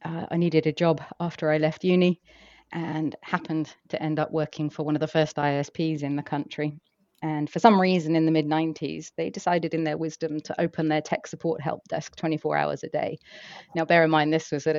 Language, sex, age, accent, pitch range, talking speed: English, female, 30-49, British, 145-165 Hz, 225 wpm